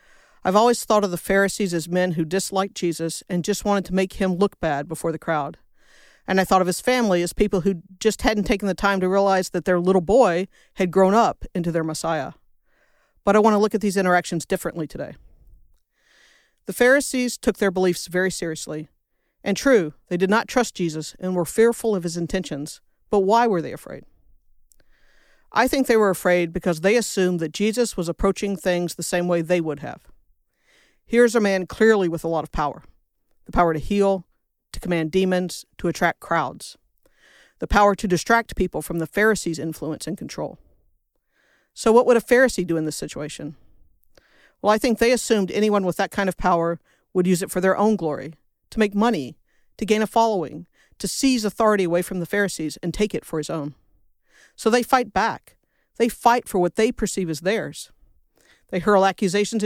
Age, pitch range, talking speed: 50-69, 170-215 Hz, 195 wpm